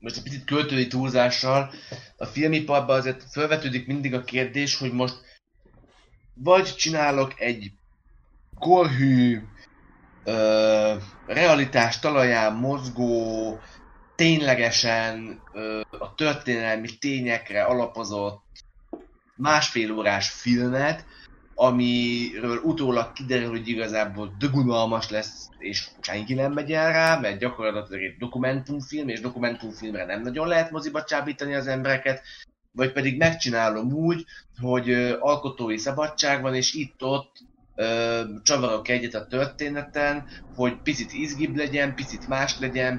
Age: 20-39